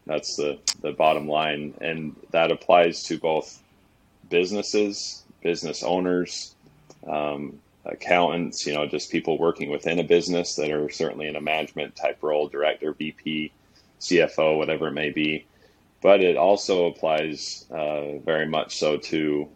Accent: American